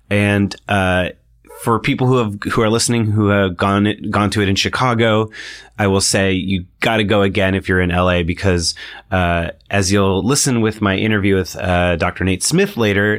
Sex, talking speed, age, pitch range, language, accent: male, 195 wpm, 30-49, 95-120 Hz, English, American